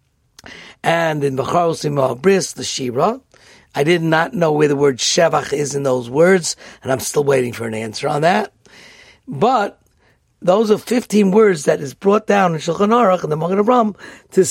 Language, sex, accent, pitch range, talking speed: English, male, American, 145-195 Hz, 175 wpm